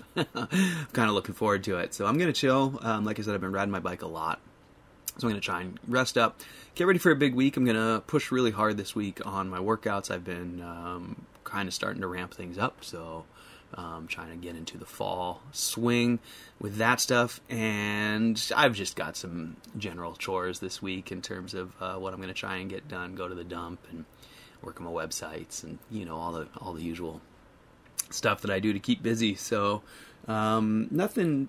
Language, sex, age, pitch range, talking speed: English, male, 20-39, 95-125 Hz, 225 wpm